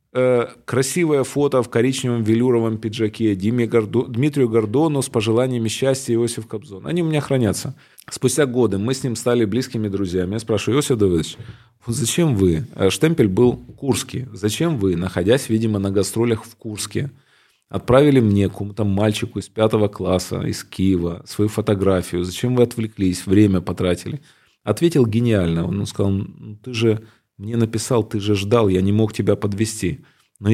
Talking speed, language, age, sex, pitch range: 155 wpm, Russian, 30-49, male, 105-125 Hz